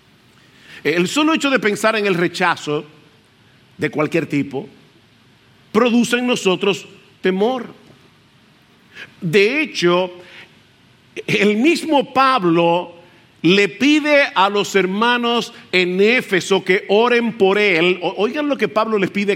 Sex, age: male, 50-69